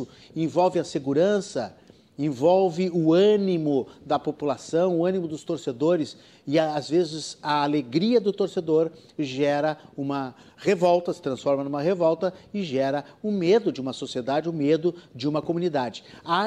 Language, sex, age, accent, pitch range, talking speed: Portuguese, male, 50-69, Brazilian, 140-185 Hz, 140 wpm